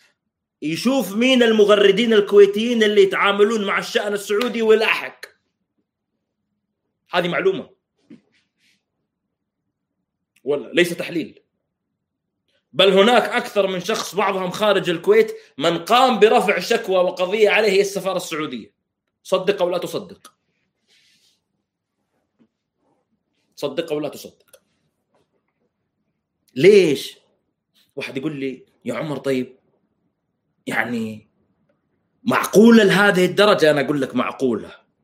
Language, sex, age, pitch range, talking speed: Arabic, male, 30-49, 160-205 Hz, 90 wpm